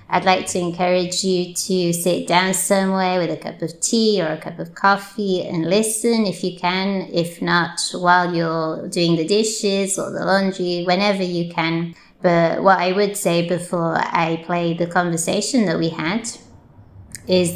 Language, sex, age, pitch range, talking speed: English, female, 20-39, 165-190 Hz, 175 wpm